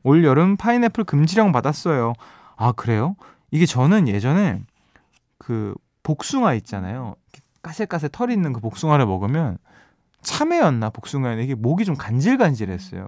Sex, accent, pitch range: male, native, 120-190 Hz